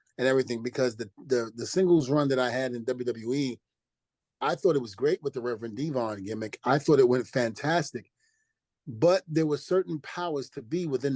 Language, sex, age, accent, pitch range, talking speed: English, male, 30-49, American, 125-155 Hz, 195 wpm